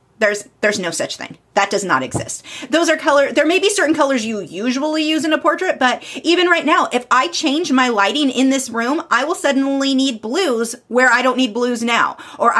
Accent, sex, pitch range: American, female, 205-280 Hz